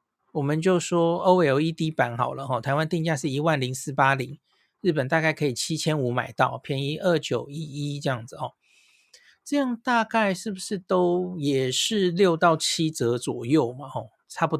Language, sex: Chinese, male